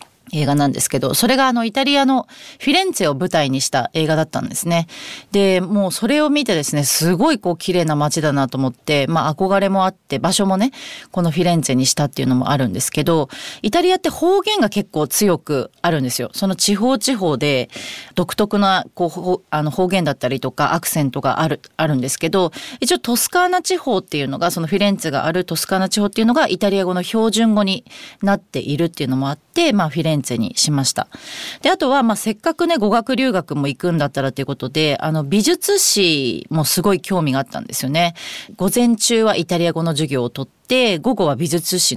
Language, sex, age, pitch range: Japanese, female, 30-49, 145-220 Hz